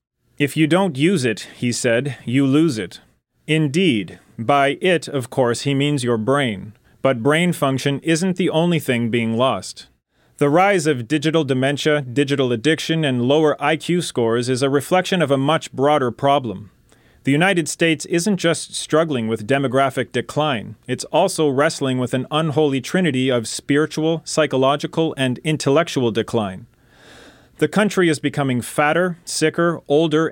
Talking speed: 150 wpm